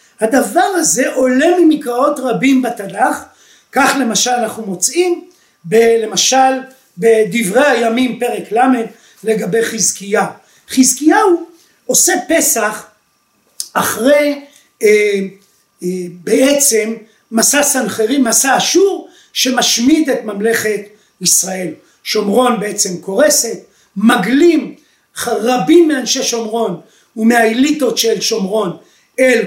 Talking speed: 90 wpm